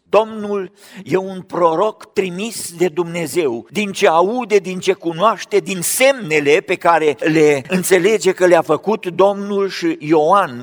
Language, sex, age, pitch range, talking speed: Romanian, male, 50-69, 140-195 Hz, 140 wpm